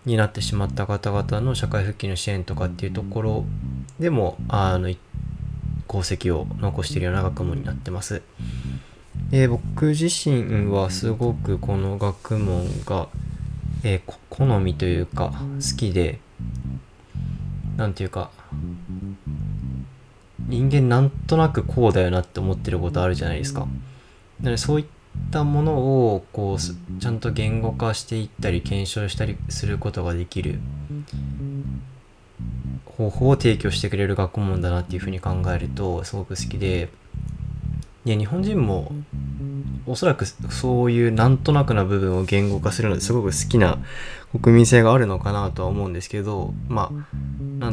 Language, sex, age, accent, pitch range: Japanese, male, 20-39, native, 90-120 Hz